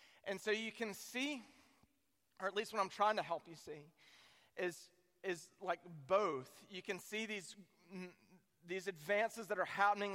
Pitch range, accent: 175-215 Hz, American